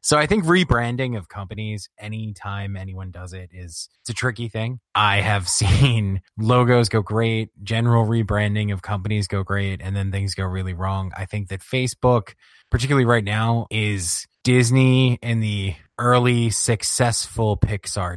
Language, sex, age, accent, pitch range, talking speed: English, male, 20-39, American, 95-115 Hz, 155 wpm